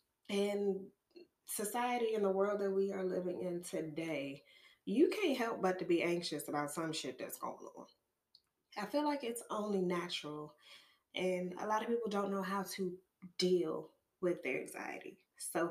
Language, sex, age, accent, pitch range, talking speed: English, female, 20-39, American, 175-270 Hz, 170 wpm